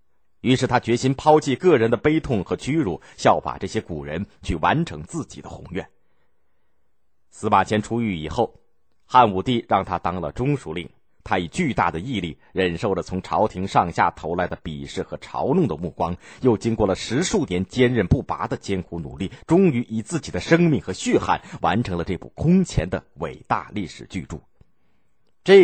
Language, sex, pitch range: Chinese, male, 90-125 Hz